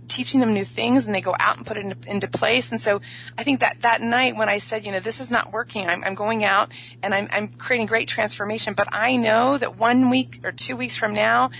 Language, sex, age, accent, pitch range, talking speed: English, female, 30-49, American, 175-235 Hz, 260 wpm